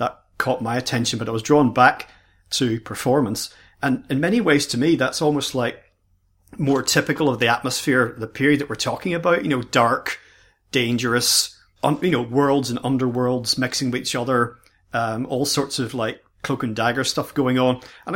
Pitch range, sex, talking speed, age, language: 115-140 Hz, male, 185 wpm, 40-59, English